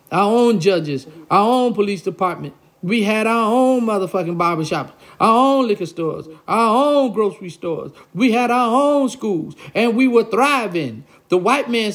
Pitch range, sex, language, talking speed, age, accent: 180-285 Hz, male, English, 165 wpm, 50-69, American